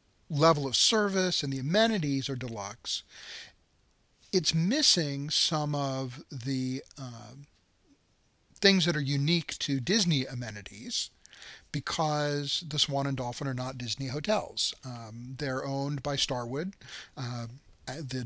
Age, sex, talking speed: 40-59, male, 120 wpm